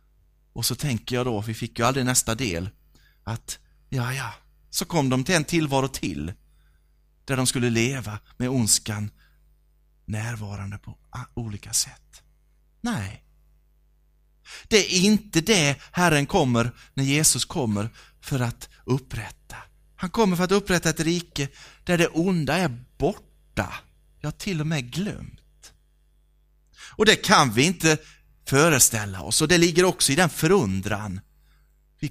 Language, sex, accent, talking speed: Swedish, male, native, 145 wpm